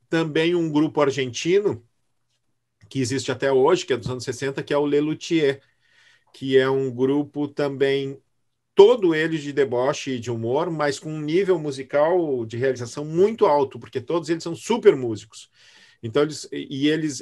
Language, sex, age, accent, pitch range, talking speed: Portuguese, male, 40-59, Brazilian, 115-155 Hz, 165 wpm